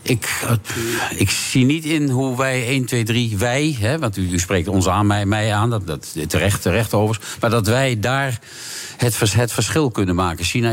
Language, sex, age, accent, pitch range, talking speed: Dutch, male, 50-69, Dutch, 100-125 Hz, 200 wpm